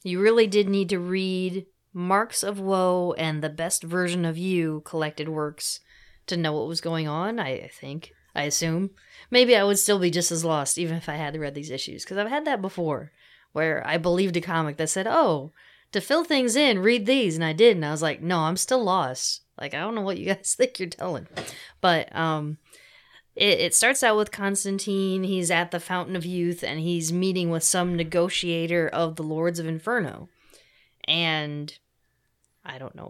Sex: female